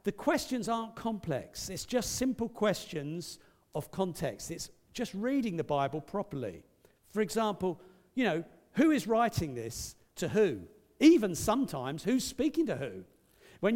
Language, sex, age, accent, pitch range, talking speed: English, male, 50-69, British, 150-210 Hz, 145 wpm